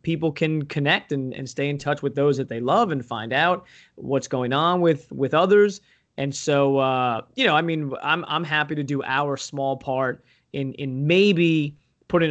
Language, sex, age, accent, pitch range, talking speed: English, male, 20-39, American, 130-160 Hz, 200 wpm